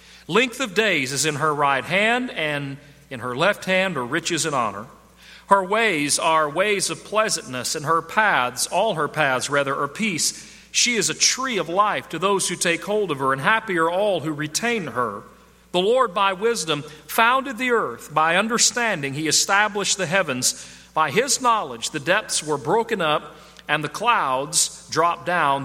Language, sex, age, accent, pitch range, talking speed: English, male, 40-59, American, 150-205 Hz, 180 wpm